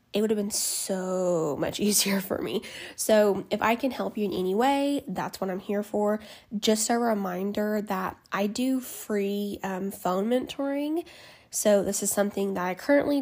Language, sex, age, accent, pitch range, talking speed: English, female, 10-29, American, 195-230 Hz, 180 wpm